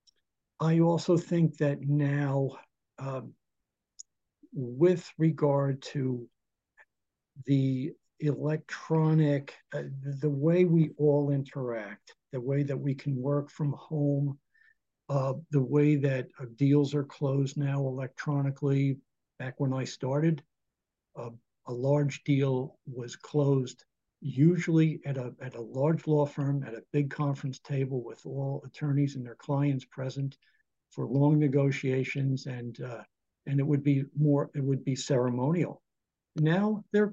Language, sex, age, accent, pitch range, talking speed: English, male, 60-79, American, 135-150 Hz, 130 wpm